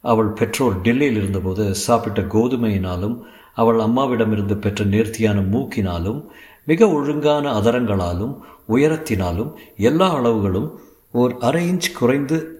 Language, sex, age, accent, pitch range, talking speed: Tamil, male, 50-69, native, 105-135 Hz, 100 wpm